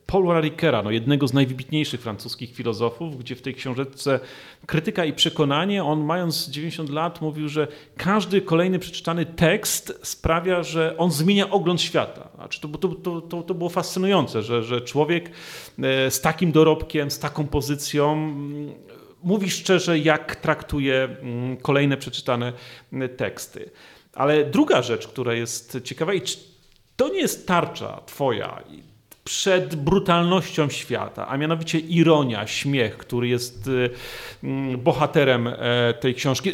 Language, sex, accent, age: Polish, male, native, 40-59